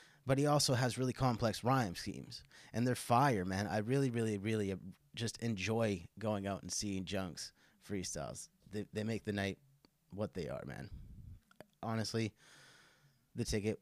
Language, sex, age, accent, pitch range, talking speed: English, male, 30-49, American, 105-145 Hz, 155 wpm